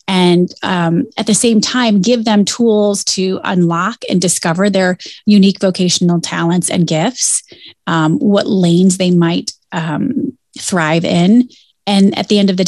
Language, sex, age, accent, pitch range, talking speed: English, female, 30-49, American, 175-220 Hz, 155 wpm